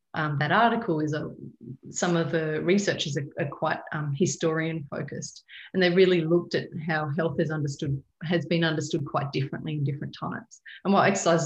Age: 30-49